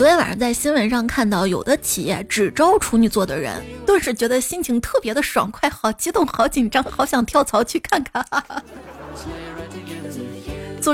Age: 20-39